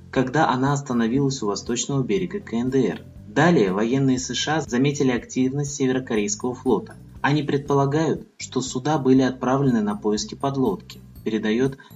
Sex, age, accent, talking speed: male, 20-39, native, 120 wpm